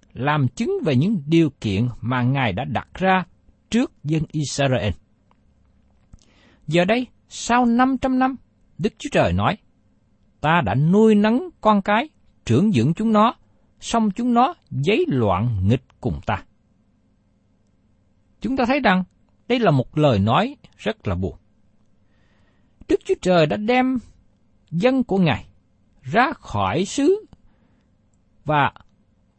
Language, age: Vietnamese, 60-79